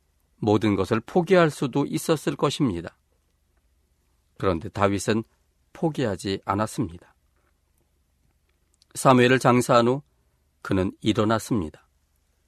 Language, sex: Korean, male